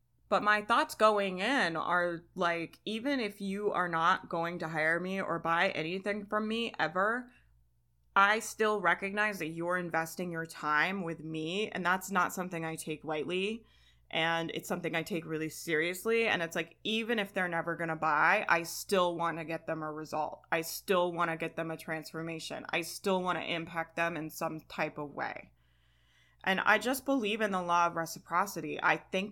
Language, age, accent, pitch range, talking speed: English, 20-39, American, 160-185 Hz, 190 wpm